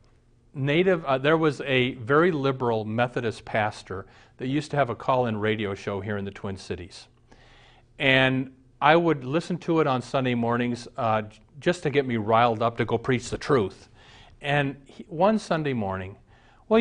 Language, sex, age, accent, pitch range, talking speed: English, male, 40-59, American, 115-170 Hz, 175 wpm